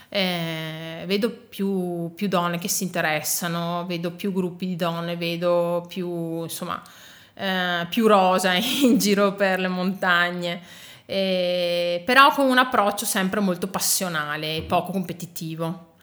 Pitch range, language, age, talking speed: 170-195 Hz, Italian, 30-49, 125 wpm